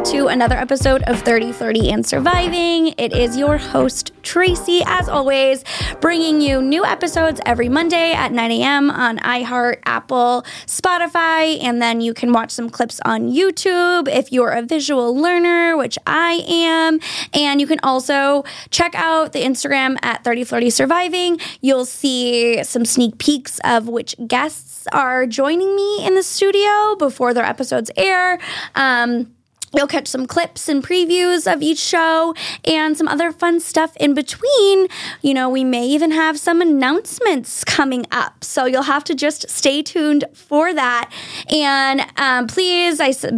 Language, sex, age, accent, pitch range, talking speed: English, female, 20-39, American, 250-335 Hz, 160 wpm